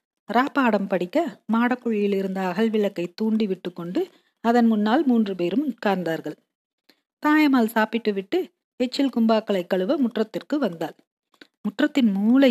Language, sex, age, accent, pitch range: Tamil, female, 40-59, native, 210-290 Hz